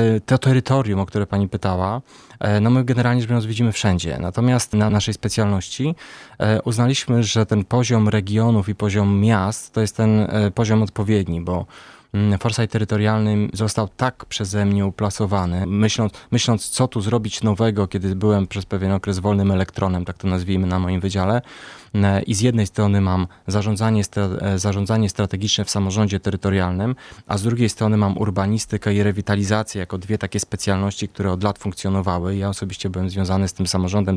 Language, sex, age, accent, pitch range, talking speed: Polish, male, 20-39, native, 95-115 Hz, 160 wpm